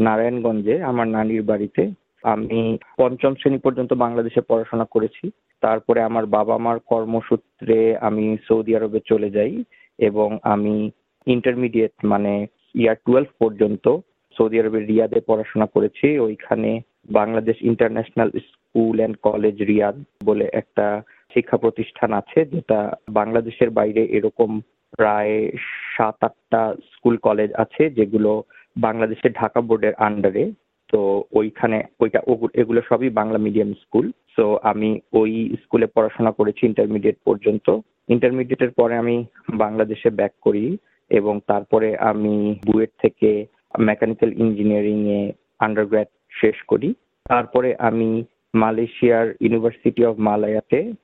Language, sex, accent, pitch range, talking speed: Bengali, male, native, 105-115 Hz, 80 wpm